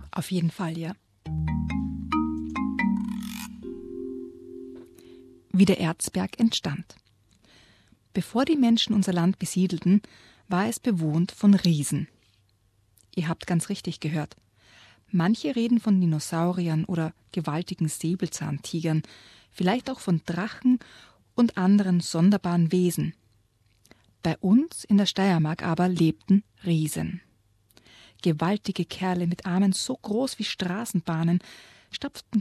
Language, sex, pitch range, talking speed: German, female, 155-205 Hz, 105 wpm